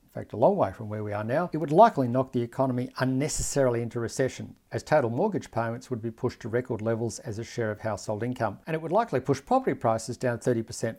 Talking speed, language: 240 wpm, English